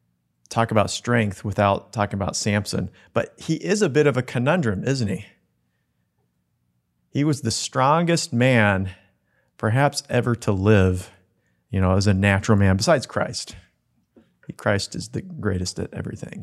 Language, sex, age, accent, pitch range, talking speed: English, male, 30-49, American, 95-120 Hz, 145 wpm